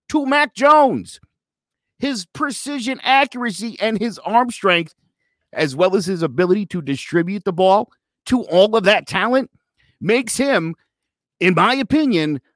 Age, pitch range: 50-69, 160-250 Hz